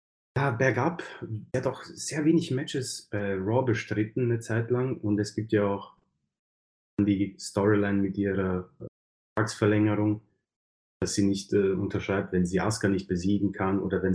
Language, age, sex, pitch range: German, 30-49, male, 100-125 Hz